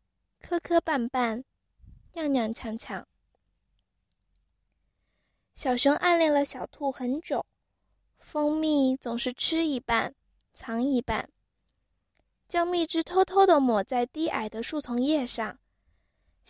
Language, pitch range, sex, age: Chinese, 215-300 Hz, female, 10-29